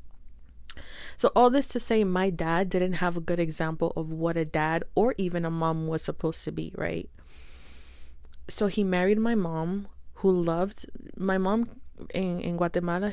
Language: English